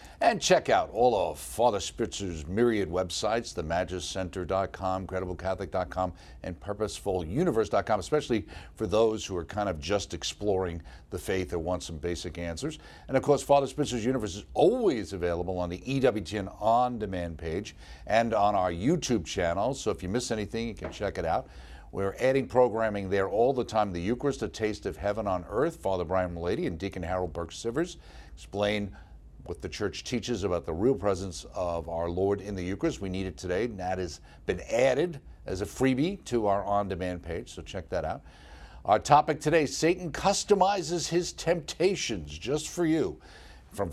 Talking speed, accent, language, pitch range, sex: 175 wpm, American, English, 90-120 Hz, male